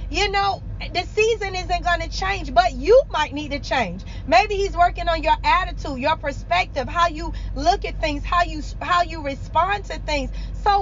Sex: female